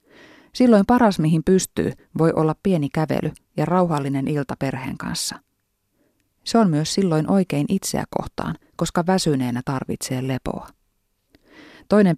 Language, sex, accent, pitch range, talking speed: Finnish, female, native, 145-185 Hz, 125 wpm